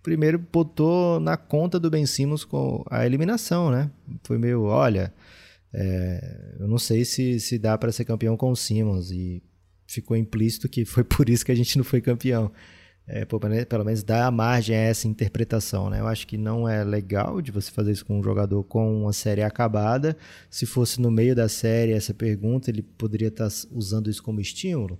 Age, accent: 20-39, Brazilian